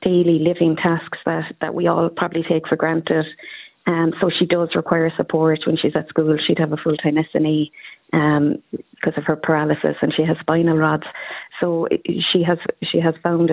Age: 30-49